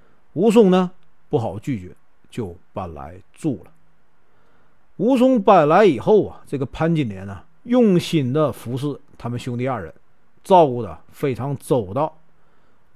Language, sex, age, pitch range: Chinese, male, 50-69, 130-210 Hz